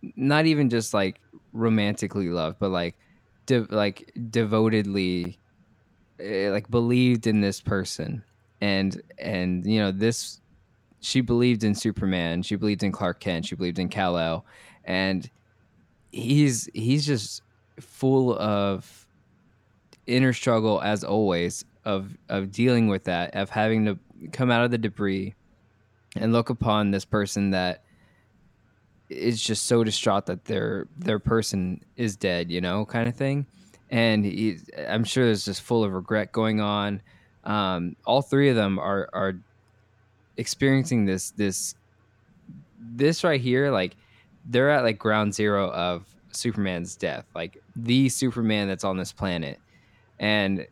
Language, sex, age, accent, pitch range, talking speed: English, male, 20-39, American, 95-115 Hz, 140 wpm